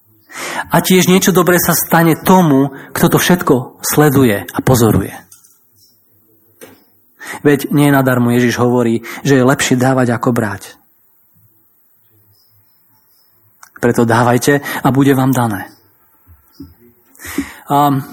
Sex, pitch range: male, 125-165 Hz